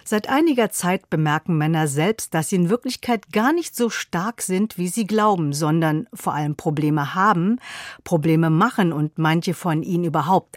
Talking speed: 170 wpm